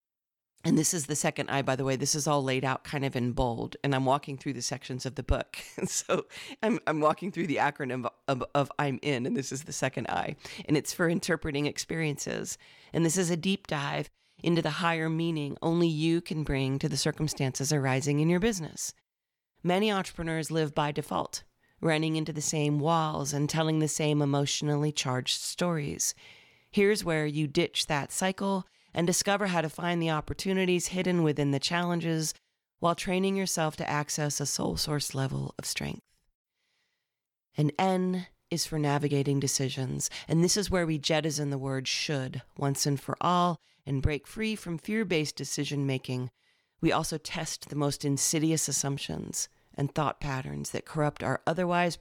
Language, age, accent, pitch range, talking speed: English, 40-59, American, 140-165 Hz, 180 wpm